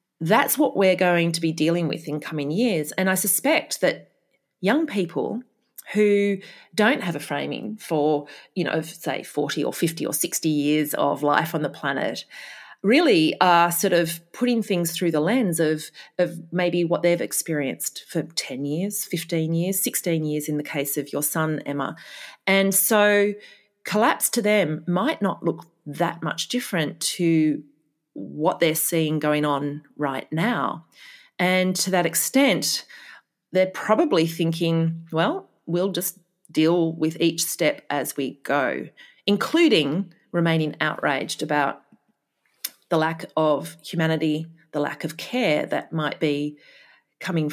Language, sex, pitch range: English, female, 155-195 Hz